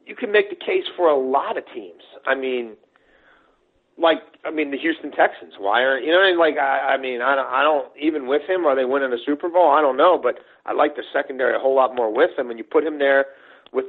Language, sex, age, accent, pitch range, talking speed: English, male, 40-59, American, 155-225 Hz, 270 wpm